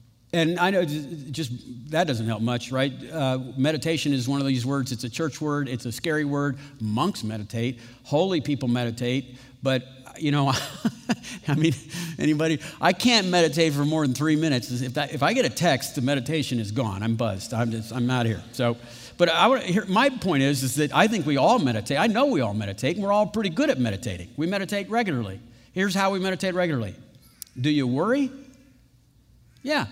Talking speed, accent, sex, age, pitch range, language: 205 wpm, American, male, 50-69, 130-190 Hz, English